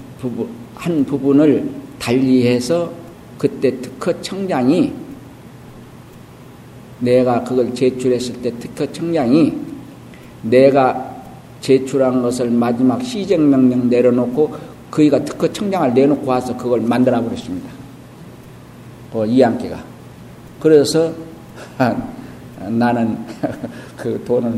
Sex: male